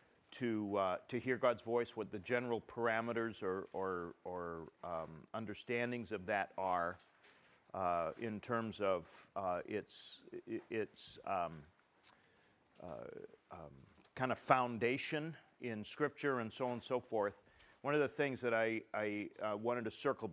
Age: 40-59